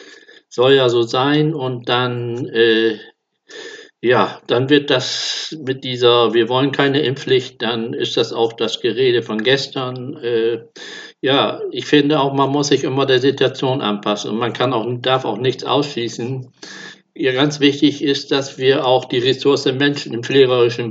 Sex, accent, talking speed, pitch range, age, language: male, German, 165 wpm, 120-150 Hz, 50-69, German